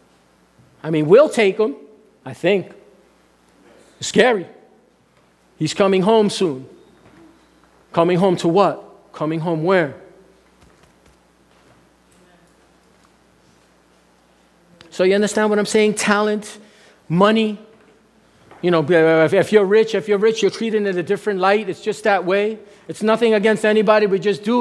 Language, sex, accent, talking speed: English, male, American, 130 wpm